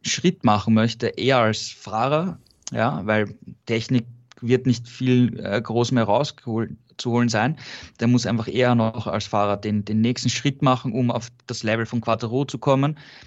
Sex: male